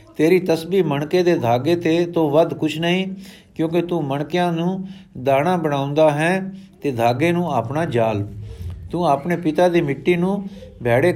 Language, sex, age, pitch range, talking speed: Punjabi, male, 50-69, 140-175 Hz, 155 wpm